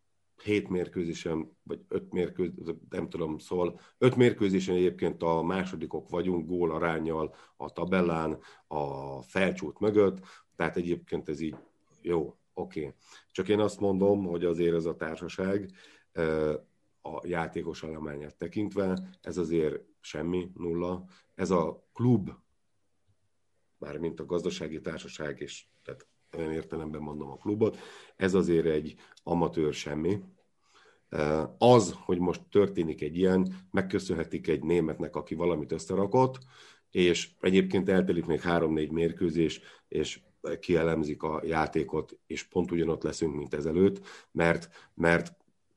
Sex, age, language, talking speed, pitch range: male, 50-69, Hungarian, 120 wpm, 80-95 Hz